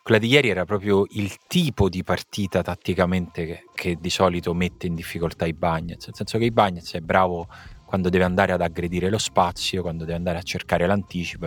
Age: 30-49